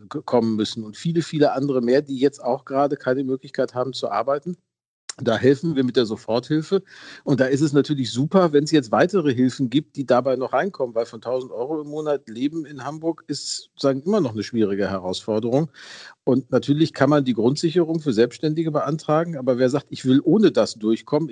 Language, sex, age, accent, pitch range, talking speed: German, male, 40-59, German, 120-145 Hz, 200 wpm